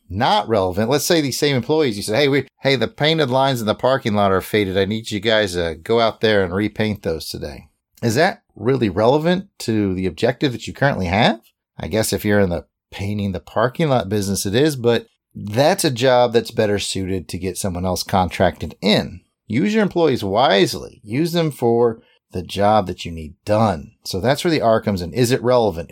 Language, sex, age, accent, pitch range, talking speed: English, male, 30-49, American, 100-130 Hz, 215 wpm